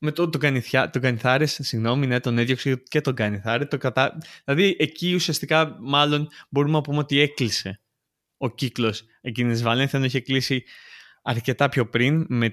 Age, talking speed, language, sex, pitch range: 20-39, 145 wpm, Greek, male, 120-155 Hz